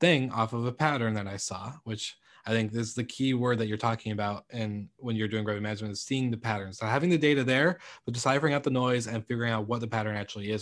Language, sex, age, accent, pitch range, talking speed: English, male, 20-39, American, 110-125 Hz, 270 wpm